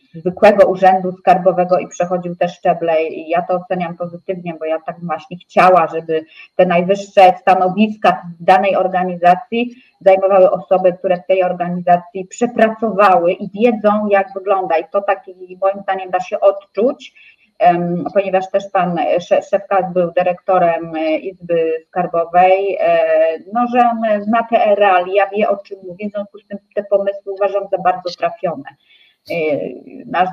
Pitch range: 175-200 Hz